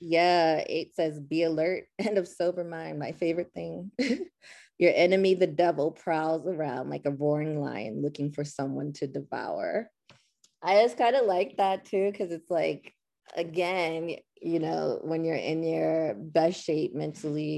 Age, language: 20-39, English